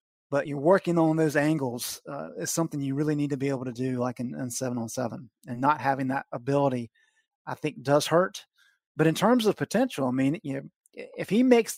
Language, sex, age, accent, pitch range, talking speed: English, male, 30-49, American, 135-170 Hz, 225 wpm